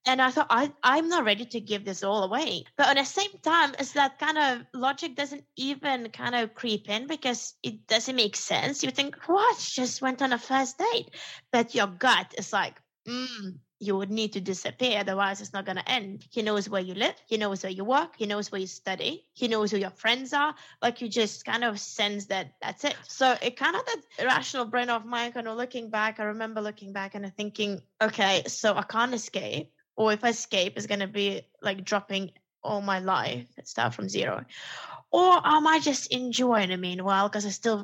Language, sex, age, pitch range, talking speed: English, female, 20-39, 205-260 Hz, 225 wpm